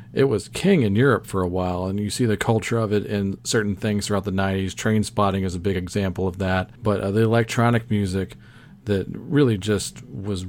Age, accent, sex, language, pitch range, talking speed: 40-59, American, male, English, 95-115 Hz, 220 wpm